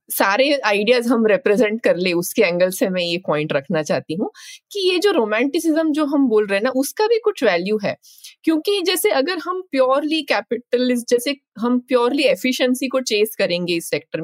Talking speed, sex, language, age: 180 wpm, female, Hindi, 20-39